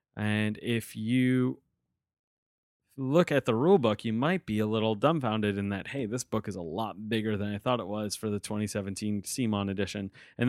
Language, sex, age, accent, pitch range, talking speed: English, male, 30-49, American, 110-135 Hz, 190 wpm